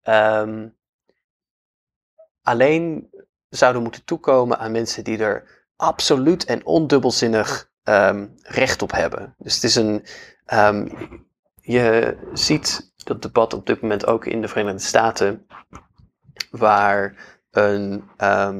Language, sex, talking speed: Dutch, male, 105 wpm